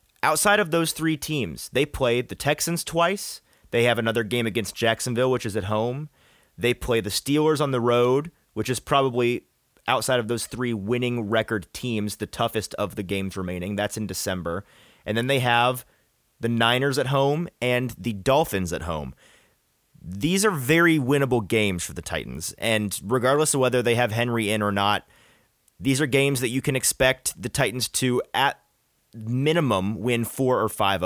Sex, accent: male, American